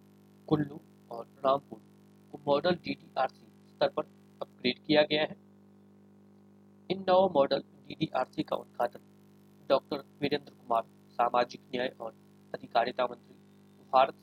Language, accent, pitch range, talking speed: Hindi, native, 140-195 Hz, 75 wpm